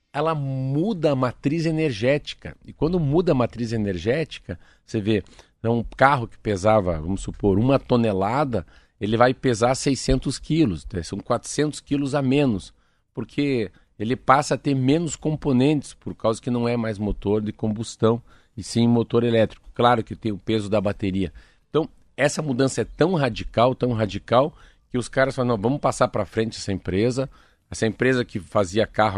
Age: 50-69